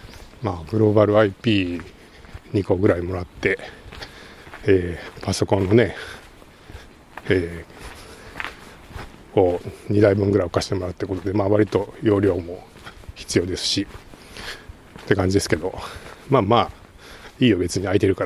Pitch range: 90-115 Hz